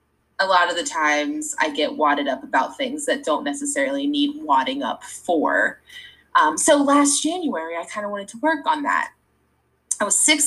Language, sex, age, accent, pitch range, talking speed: English, female, 20-39, American, 165-275 Hz, 190 wpm